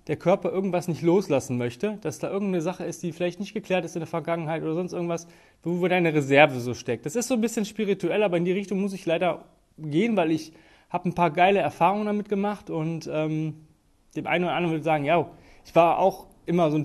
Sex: male